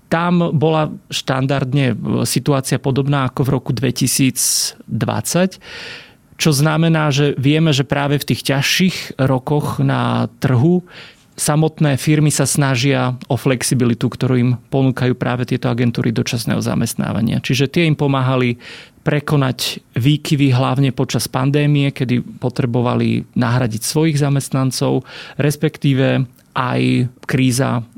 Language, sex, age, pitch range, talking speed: Slovak, male, 30-49, 125-145 Hz, 110 wpm